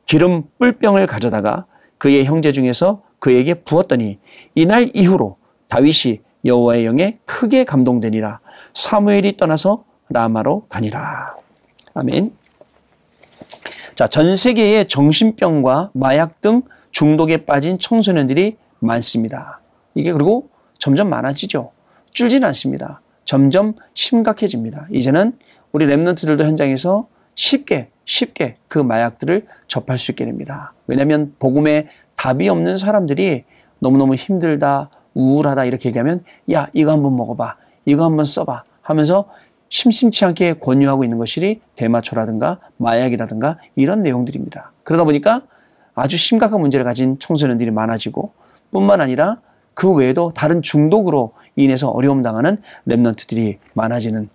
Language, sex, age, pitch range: Korean, male, 40-59, 125-190 Hz